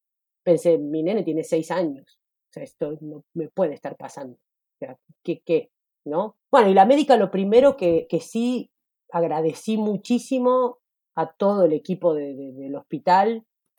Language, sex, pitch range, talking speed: Spanish, female, 160-190 Hz, 165 wpm